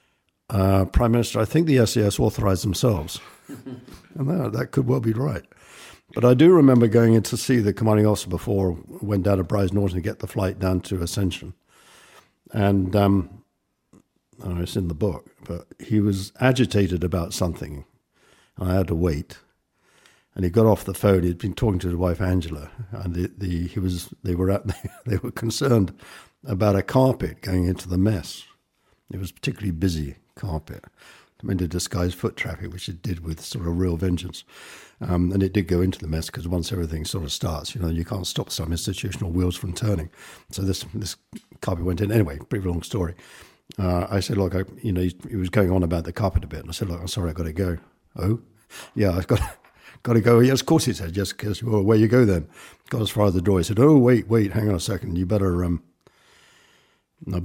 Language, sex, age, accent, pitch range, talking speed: English, male, 60-79, British, 90-110 Hz, 215 wpm